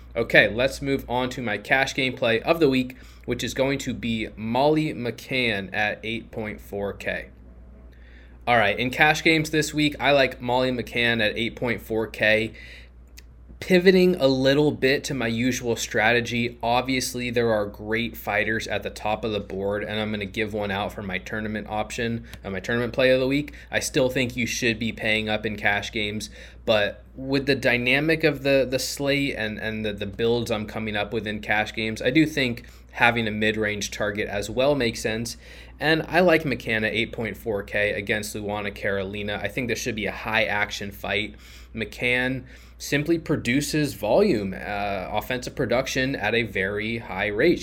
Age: 20-39